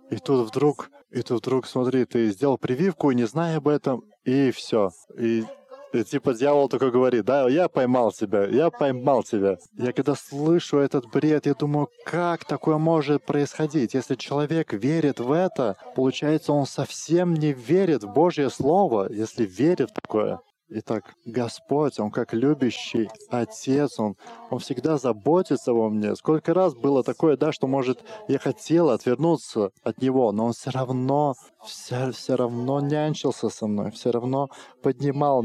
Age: 20-39